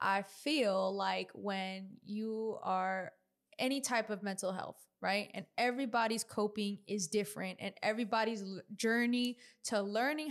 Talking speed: 130 wpm